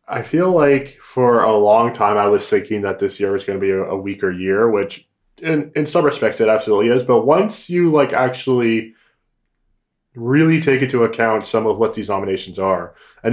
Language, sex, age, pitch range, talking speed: English, male, 20-39, 100-150 Hz, 200 wpm